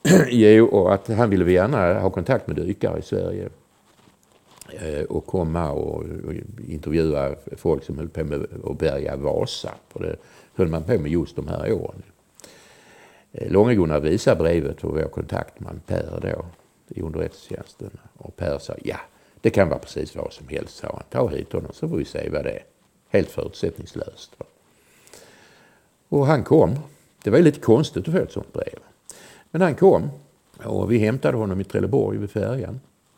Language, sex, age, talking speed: Swedish, male, 60-79, 165 wpm